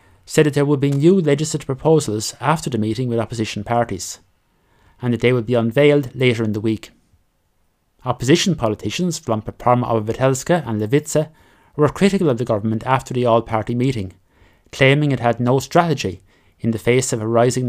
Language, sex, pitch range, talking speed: English, male, 110-140 Hz, 175 wpm